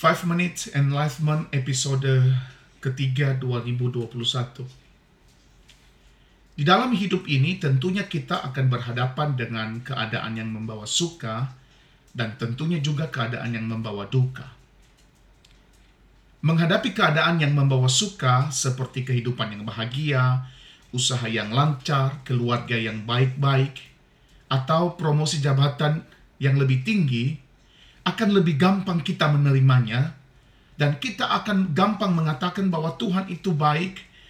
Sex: male